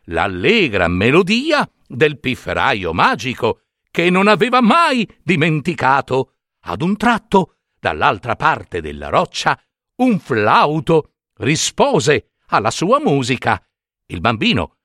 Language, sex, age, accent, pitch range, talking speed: Italian, male, 60-79, native, 130-215 Hz, 100 wpm